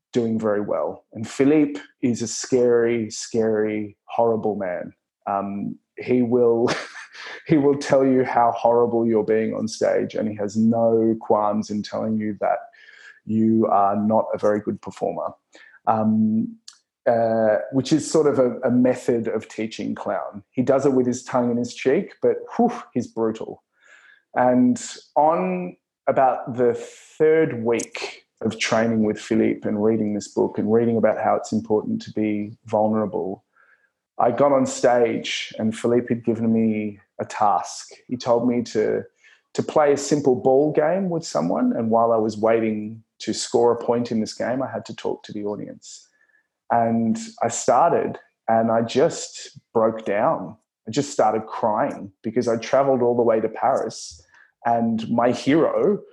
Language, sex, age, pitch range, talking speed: English, male, 20-39, 110-130 Hz, 160 wpm